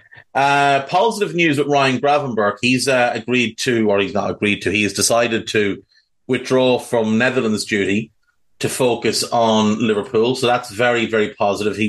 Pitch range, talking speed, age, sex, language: 110-135 Hz, 165 wpm, 30-49, male, English